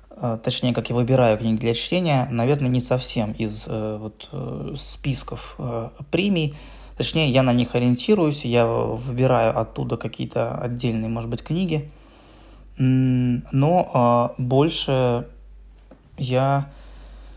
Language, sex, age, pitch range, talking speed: Russian, male, 20-39, 115-140 Hz, 100 wpm